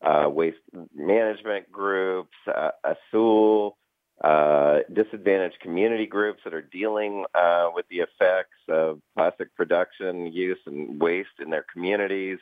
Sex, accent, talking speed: male, American, 125 wpm